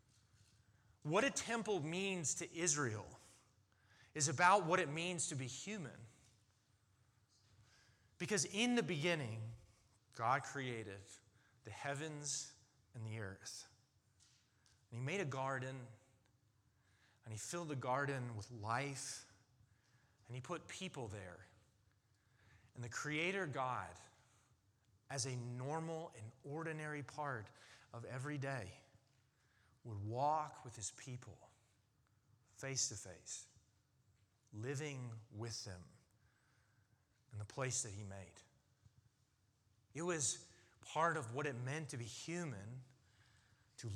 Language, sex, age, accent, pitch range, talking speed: English, male, 30-49, American, 110-140 Hz, 115 wpm